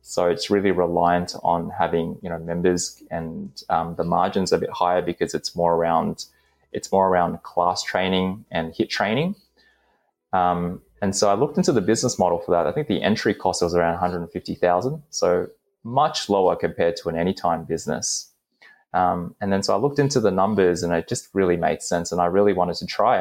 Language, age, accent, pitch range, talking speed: English, 20-39, Australian, 85-100 Hz, 210 wpm